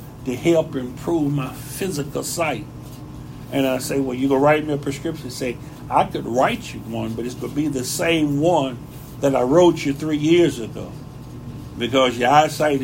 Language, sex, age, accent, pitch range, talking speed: English, male, 60-79, American, 140-185 Hz, 190 wpm